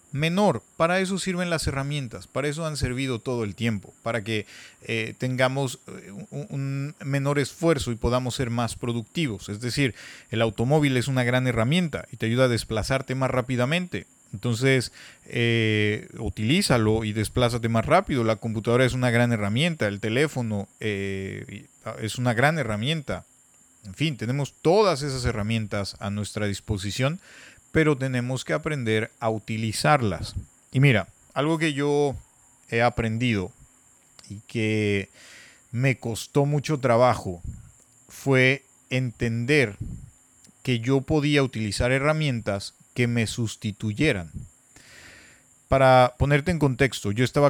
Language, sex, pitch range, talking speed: Spanish, male, 110-135 Hz, 135 wpm